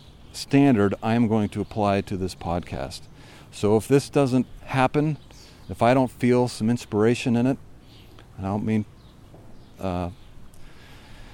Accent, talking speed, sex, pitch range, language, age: American, 130 wpm, male, 90-115 Hz, English, 40-59